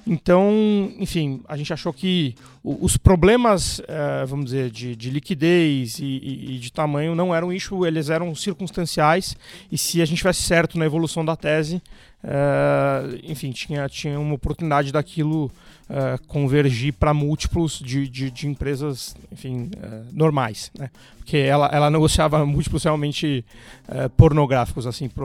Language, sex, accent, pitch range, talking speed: Portuguese, male, Brazilian, 135-165 Hz, 145 wpm